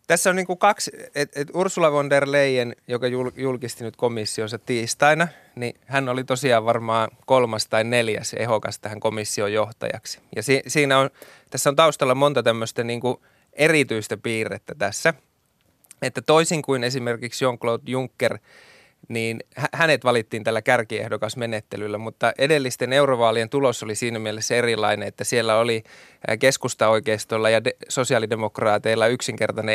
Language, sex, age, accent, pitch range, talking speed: Finnish, male, 20-39, native, 110-135 Hz, 125 wpm